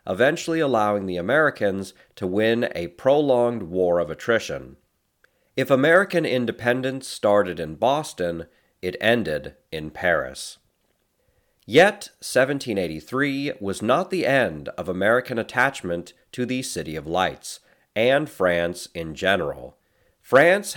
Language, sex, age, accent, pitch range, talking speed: English, male, 40-59, American, 90-130 Hz, 115 wpm